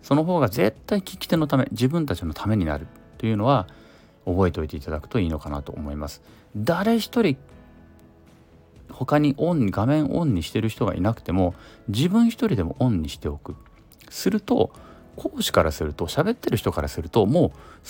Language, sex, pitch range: Japanese, male, 80-125 Hz